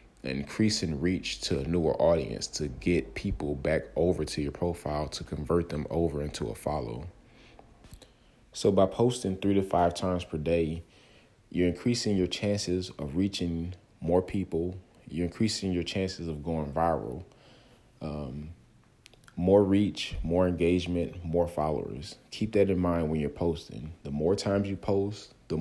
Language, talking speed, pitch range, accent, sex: English, 150 wpm, 80-100 Hz, American, male